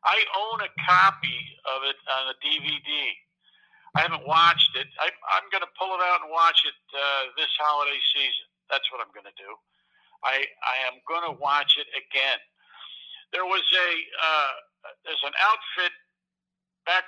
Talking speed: 170 wpm